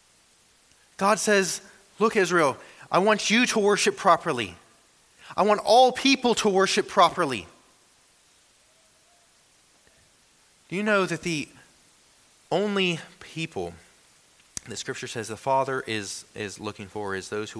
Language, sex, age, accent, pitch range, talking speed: English, male, 30-49, American, 130-195 Hz, 125 wpm